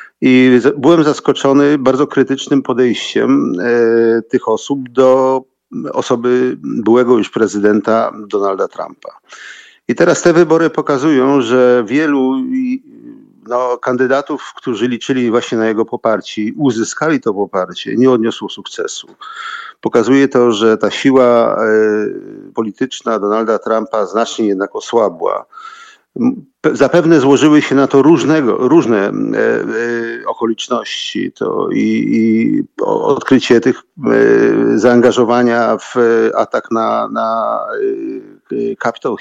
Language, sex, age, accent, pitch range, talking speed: Polish, male, 50-69, native, 115-150 Hz, 100 wpm